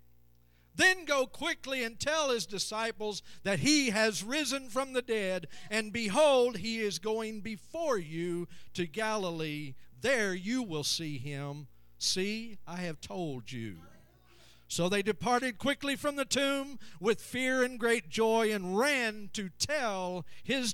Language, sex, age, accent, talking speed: English, male, 50-69, American, 145 wpm